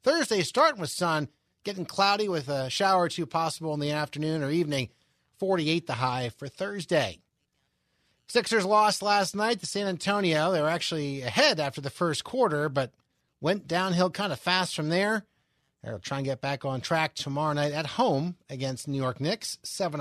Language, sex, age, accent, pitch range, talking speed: English, male, 30-49, American, 130-170 Hz, 185 wpm